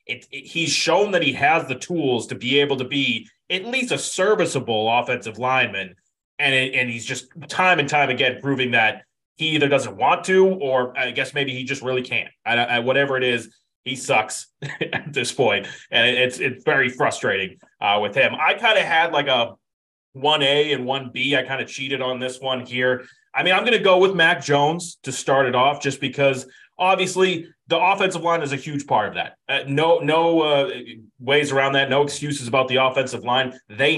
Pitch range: 125-150 Hz